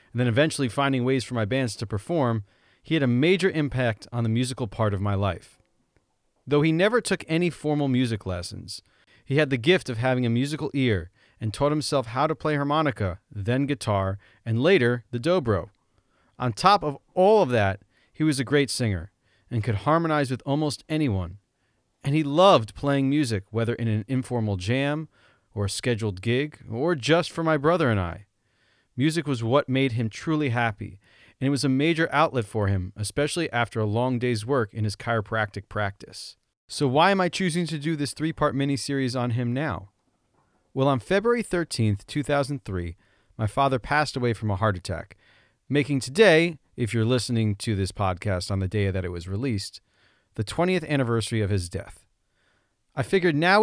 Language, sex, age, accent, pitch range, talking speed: English, male, 30-49, American, 105-145 Hz, 185 wpm